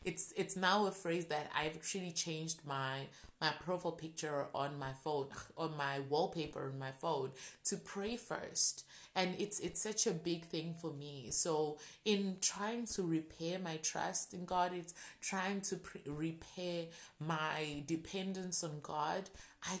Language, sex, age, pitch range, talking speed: English, female, 20-39, 150-180 Hz, 160 wpm